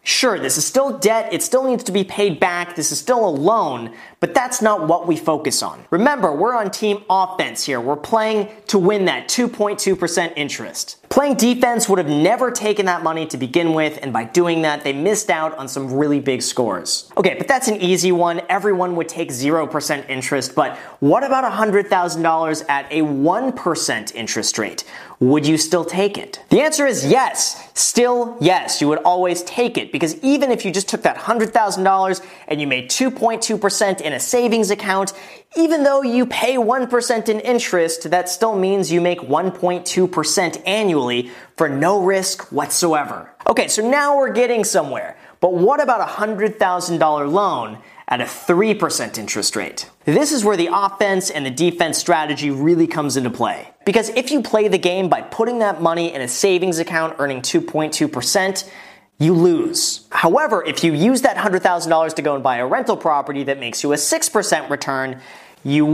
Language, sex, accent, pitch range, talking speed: English, male, American, 155-220 Hz, 180 wpm